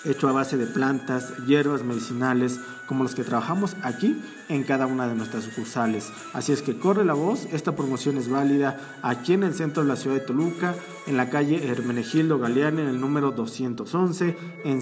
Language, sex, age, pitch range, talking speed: Spanish, male, 40-59, 125-155 Hz, 190 wpm